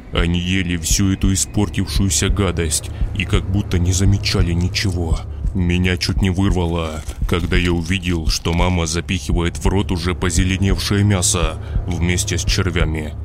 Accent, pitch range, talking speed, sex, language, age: native, 85-95 Hz, 135 wpm, male, Russian, 20-39